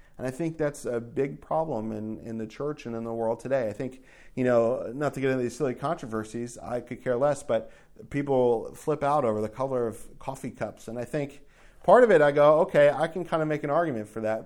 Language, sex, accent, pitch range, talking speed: English, male, American, 115-145 Hz, 245 wpm